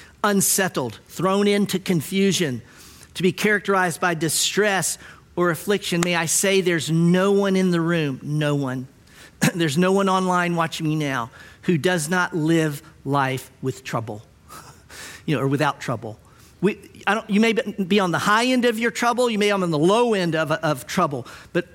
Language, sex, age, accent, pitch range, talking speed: English, male, 50-69, American, 160-200 Hz, 180 wpm